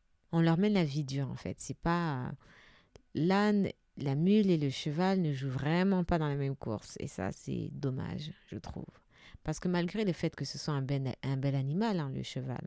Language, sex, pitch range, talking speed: French, female, 140-185 Hz, 225 wpm